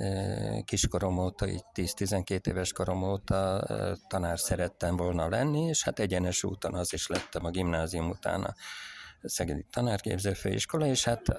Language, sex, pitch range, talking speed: Hungarian, male, 85-105 Hz, 140 wpm